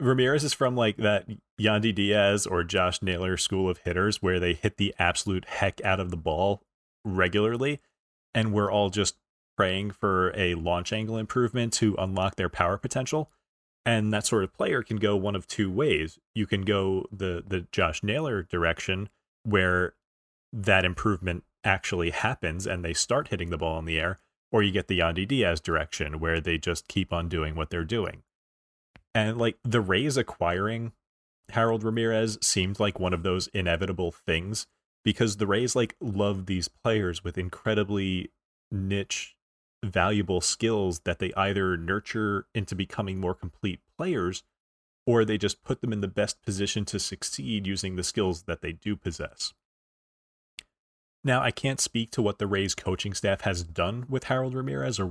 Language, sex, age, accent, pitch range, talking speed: English, male, 30-49, American, 90-110 Hz, 170 wpm